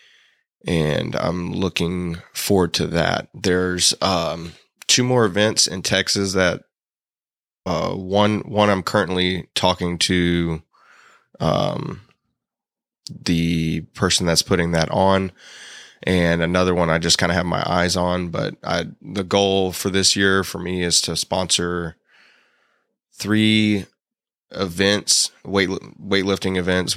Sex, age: male, 20-39